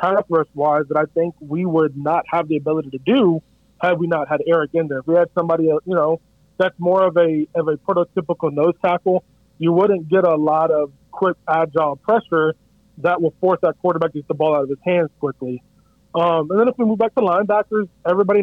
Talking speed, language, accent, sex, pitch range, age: 220 wpm, English, American, male, 150-185 Hz, 30-49